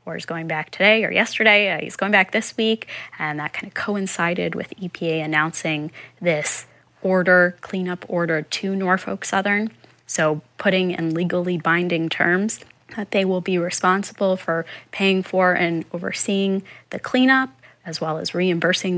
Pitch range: 175-205 Hz